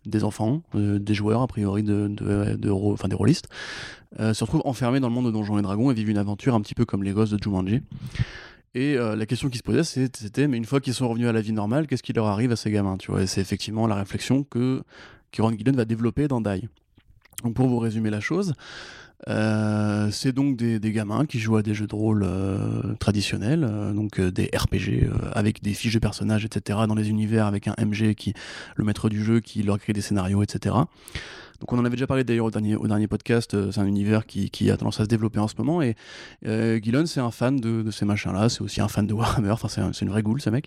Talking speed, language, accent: 265 wpm, French, French